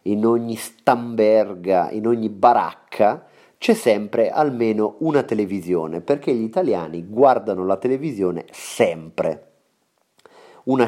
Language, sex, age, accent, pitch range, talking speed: Italian, male, 30-49, native, 90-115 Hz, 105 wpm